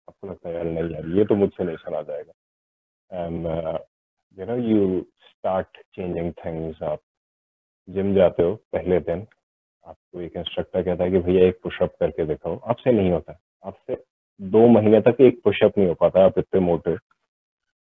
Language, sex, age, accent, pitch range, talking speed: Hindi, male, 30-49, native, 85-105 Hz, 155 wpm